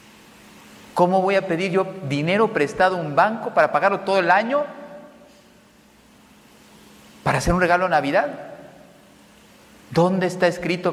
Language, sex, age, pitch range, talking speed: Spanish, male, 40-59, 125-185 Hz, 130 wpm